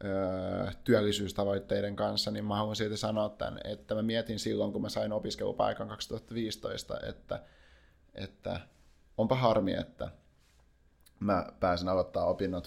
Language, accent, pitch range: Finnish, native, 75-105 Hz